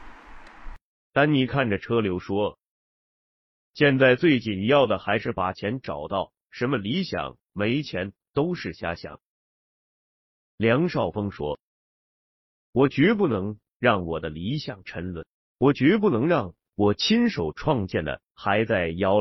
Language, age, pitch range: Chinese, 30-49, 100-145 Hz